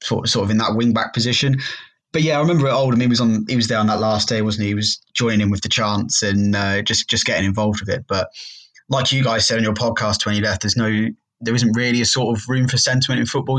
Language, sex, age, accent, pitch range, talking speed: English, male, 20-39, British, 105-120 Hz, 265 wpm